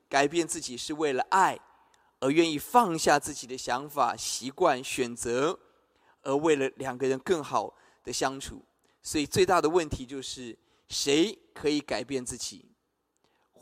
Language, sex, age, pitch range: Chinese, male, 20-39, 130-180 Hz